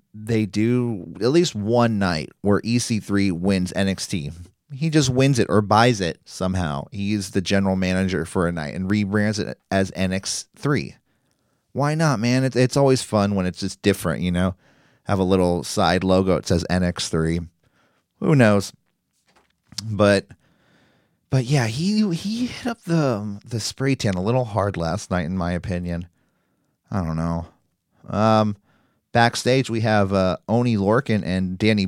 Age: 30-49